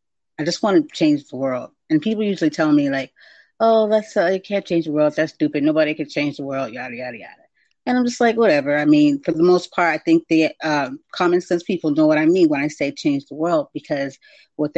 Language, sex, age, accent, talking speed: English, female, 30-49, American, 250 wpm